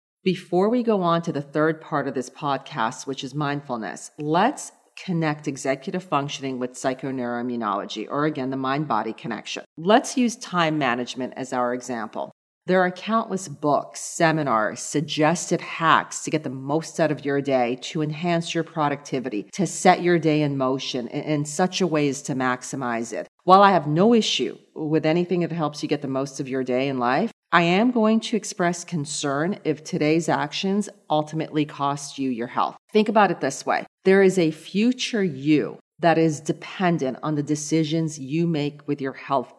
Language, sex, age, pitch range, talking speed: English, female, 40-59, 140-175 Hz, 180 wpm